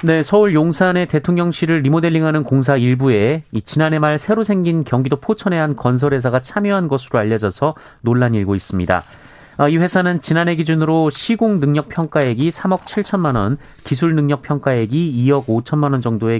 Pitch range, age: 120-160 Hz, 30-49